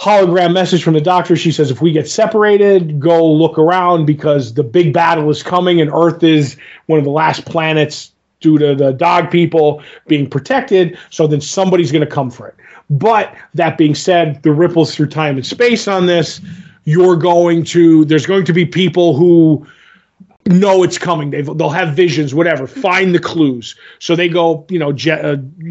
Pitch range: 150-175 Hz